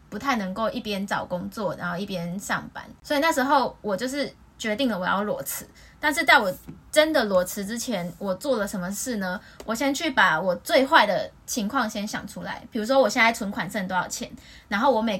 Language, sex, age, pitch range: Chinese, female, 20-39, 200-265 Hz